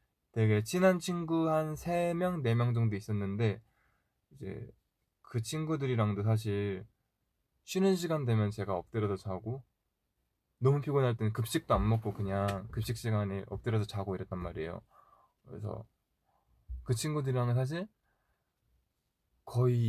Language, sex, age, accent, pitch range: Korean, male, 20-39, native, 100-135 Hz